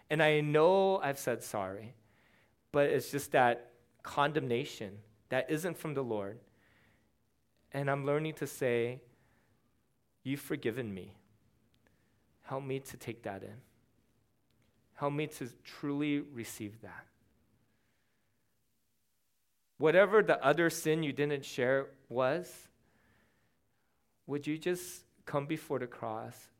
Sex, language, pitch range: male, English, 110-150 Hz